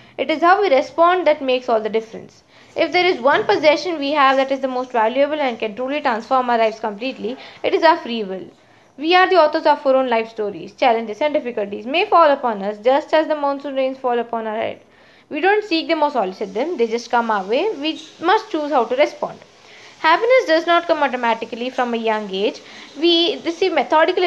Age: 20-39